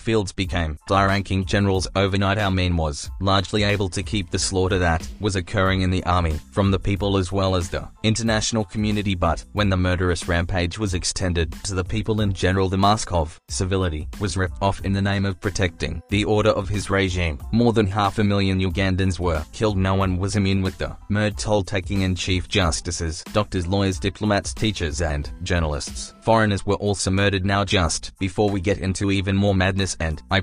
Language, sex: English, male